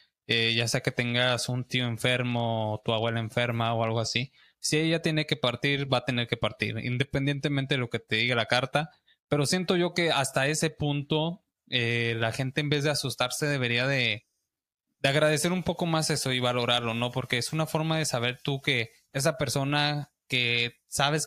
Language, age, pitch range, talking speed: Spanish, 20-39, 120-145 Hz, 200 wpm